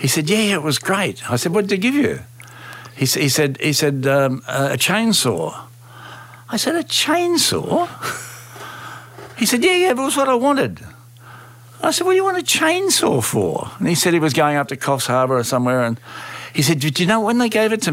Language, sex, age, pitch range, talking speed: English, male, 60-79, 120-155 Hz, 230 wpm